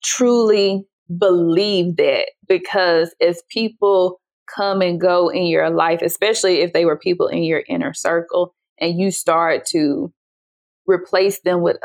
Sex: female